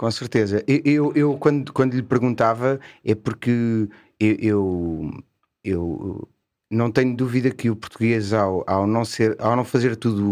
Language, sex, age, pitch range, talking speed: Portuguese, male, 30-49, 100-120 Hz, 140 wpm